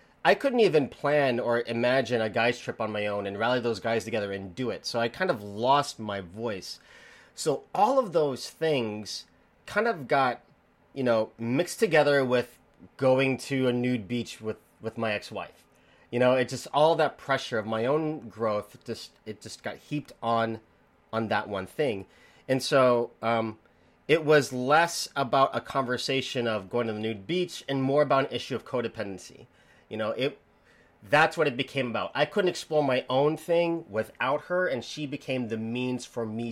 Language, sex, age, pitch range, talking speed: English, male, 30-49, 110-145 Hz, 190 wpm